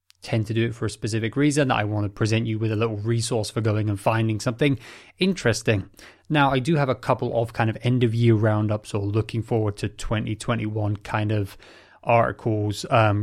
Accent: British